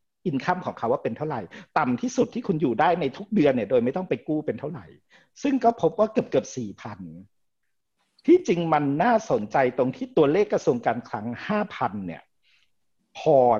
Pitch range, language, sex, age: 120-190 Hz, Thai, male, 60-79